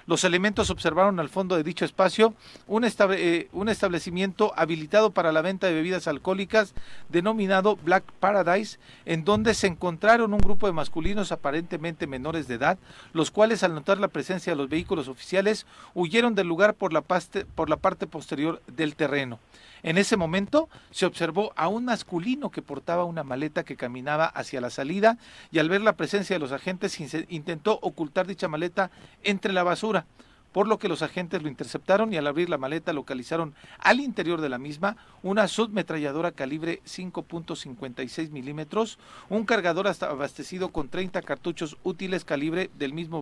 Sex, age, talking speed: male, 40-59, 160 wpm